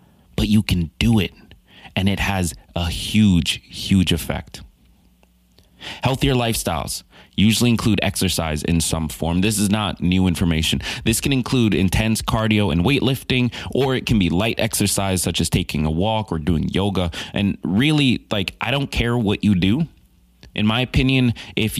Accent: American